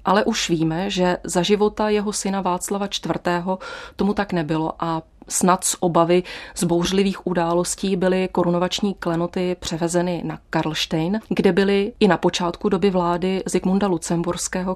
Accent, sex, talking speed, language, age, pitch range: native, female, 140 wpm, Czech, 30-49, 170-190 Hz